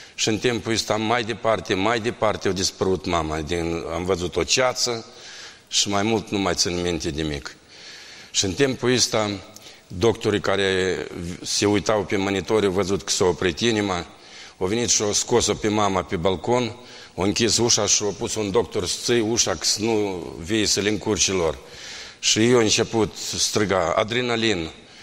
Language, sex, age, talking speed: Romanian, male, 50-69, 175 wpm